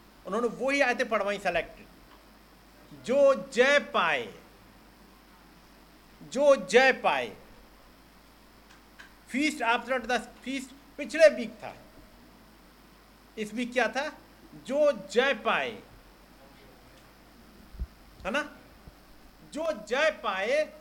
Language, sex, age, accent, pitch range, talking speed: Hindi, male, 50-69, native, 220-275 Hz, 85 wpm